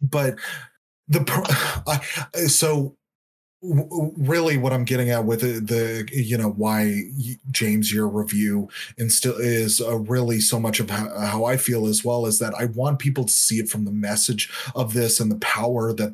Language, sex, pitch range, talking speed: English, male, 110-130 Hz, 165 wpm